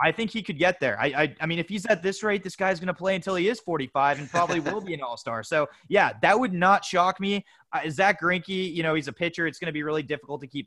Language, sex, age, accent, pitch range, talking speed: English, male, 20-39, American, 130-180 Hz, 305 wpm